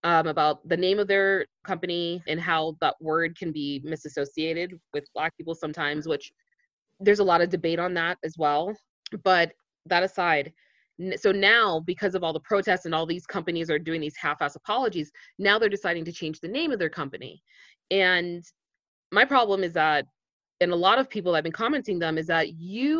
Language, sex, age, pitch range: English, female, 20-39, 165-210 Hz